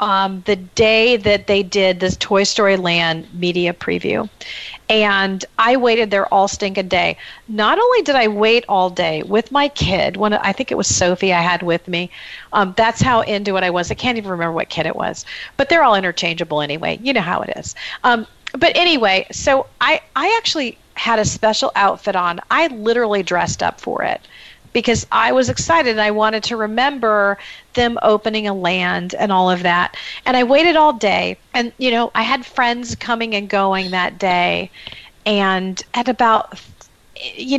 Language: English